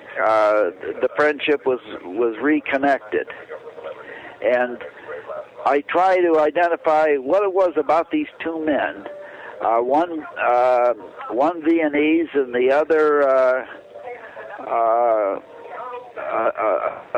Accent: American